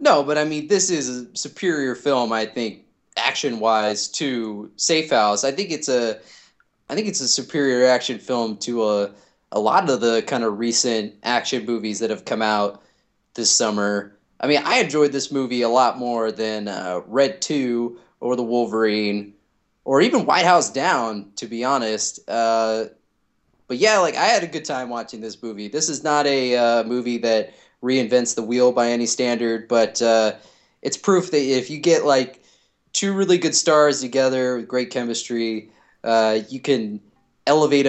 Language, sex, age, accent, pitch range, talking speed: English, male, 20-39, American, 110-140 Hz, 180 wpm